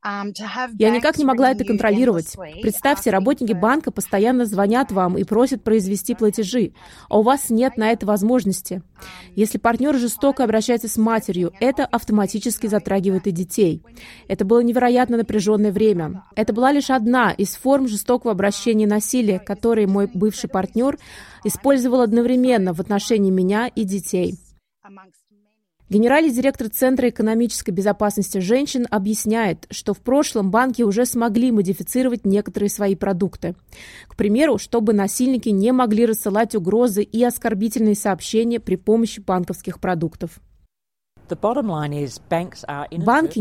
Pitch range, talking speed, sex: 200-240 Hz, 130 wpm, female